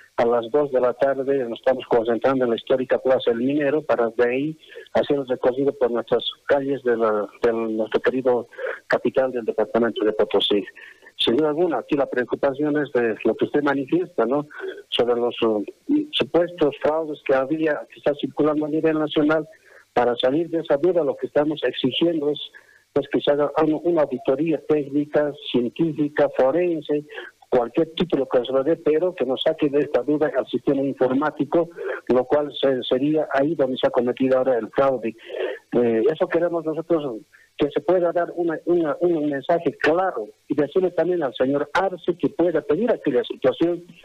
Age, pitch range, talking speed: 50-69, 135-175 Hz, 180 wpm